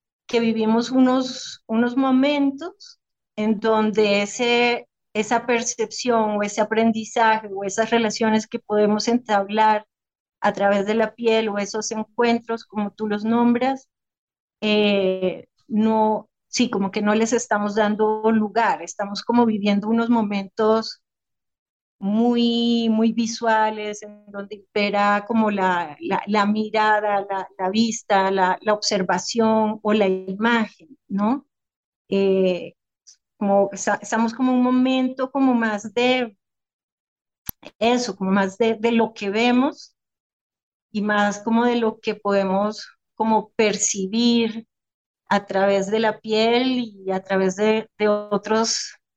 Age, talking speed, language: 30-49, 130 wpm, Spanish